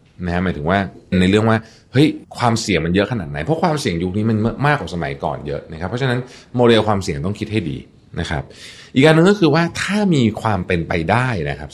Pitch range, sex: 85-120 Hz, male